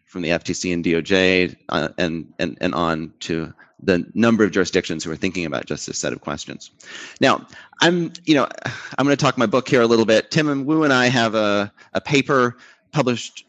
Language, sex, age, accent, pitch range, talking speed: English, male, 30-49, American, 110-150 Hz, 210 wpm